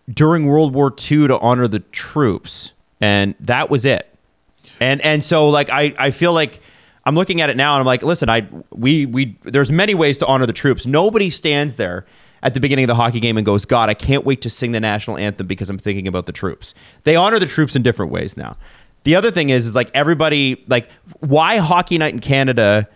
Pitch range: 115-160 Hz